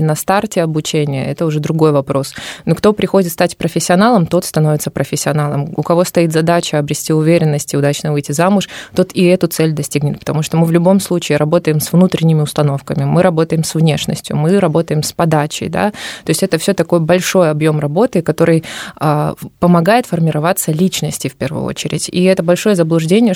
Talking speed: 175 wpm